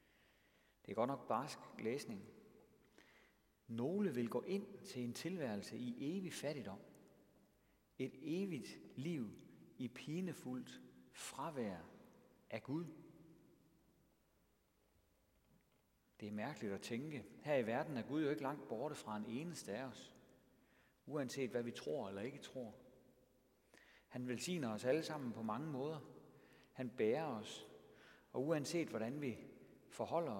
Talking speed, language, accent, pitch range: 130 wpm, Danish, native, 115-160 Hz